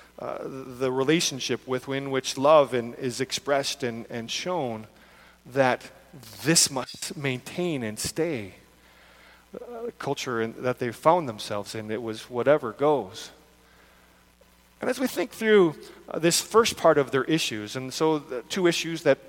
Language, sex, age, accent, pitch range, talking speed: English, male, 40-59, American, 120-160 Hz, 150 wpm